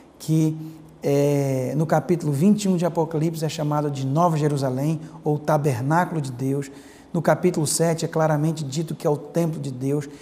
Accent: Brazilian